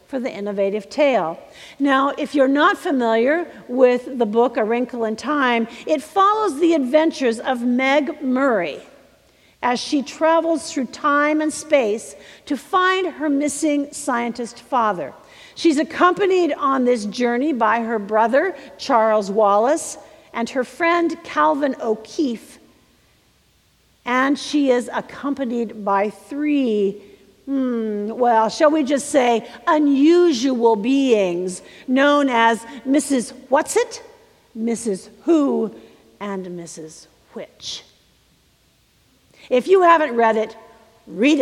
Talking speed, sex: 115 wpm, female